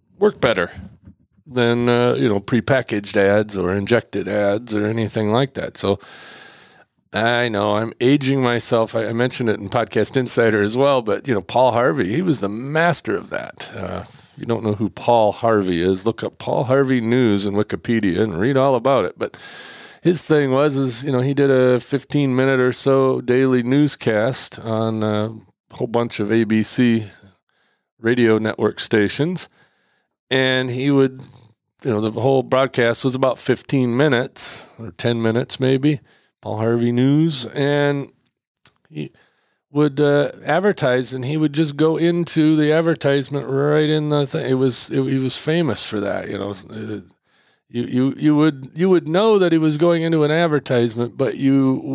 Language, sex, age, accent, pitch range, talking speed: English, male, 40-59, American, 115-140 Hz, 170 wpm